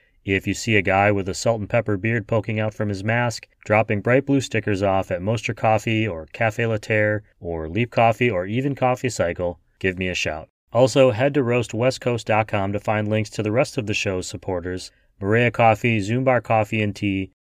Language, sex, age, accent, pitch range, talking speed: English, male, 30-49, American, 100-115 Hz, 200 wpm